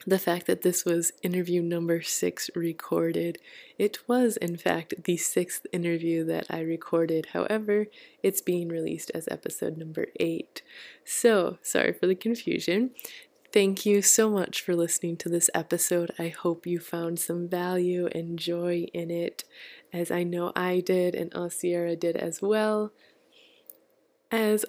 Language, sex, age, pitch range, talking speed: English, female, 20-39, 170-205 Hz, 150 wpm